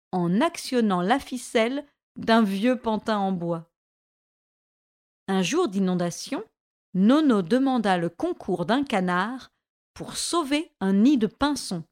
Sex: female